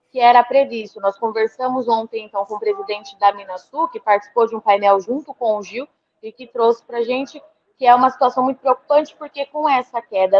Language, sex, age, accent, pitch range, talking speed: Portuguese, female, 20-39, Brazilian, 220-275 Hz, 215 wpm